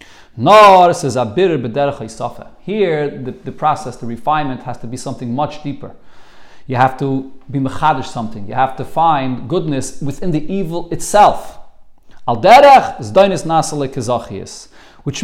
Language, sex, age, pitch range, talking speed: English, male, 40-59, 135-200 Hz, 110 wpm